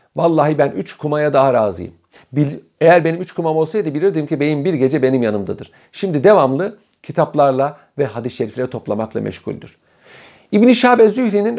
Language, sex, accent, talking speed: Turkish, male, native, 150 wpm